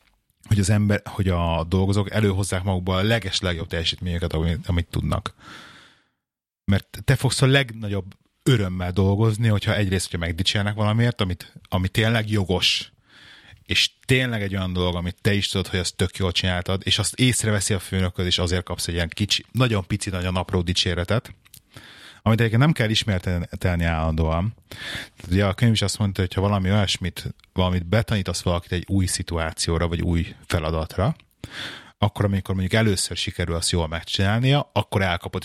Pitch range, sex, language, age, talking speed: 90-110 Hz, male, Hungarian, 30-49, 160 wpm